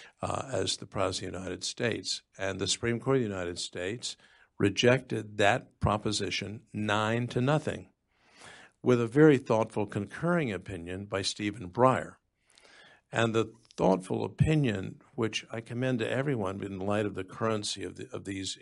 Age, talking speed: 50-69, 155 wpm